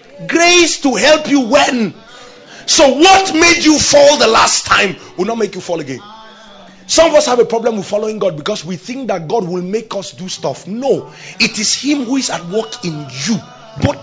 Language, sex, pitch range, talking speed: English, male, 185-265 Hz, 210 wpm